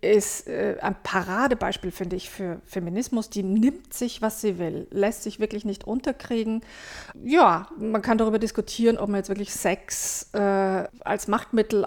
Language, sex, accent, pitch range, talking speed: German, female, German, 210-260 Hz, 160 wpm